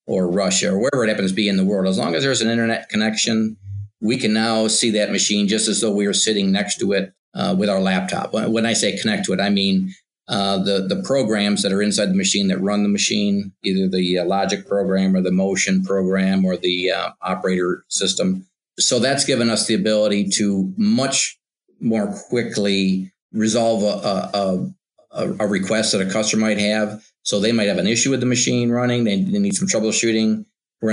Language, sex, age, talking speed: English, male, 50-69, 210 wpm